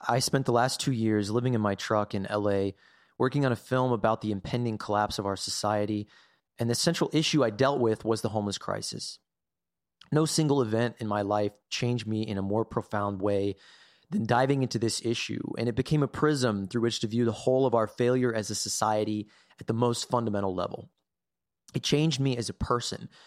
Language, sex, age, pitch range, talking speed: English, male, 30-49, 105-130 Hz, 205 wpm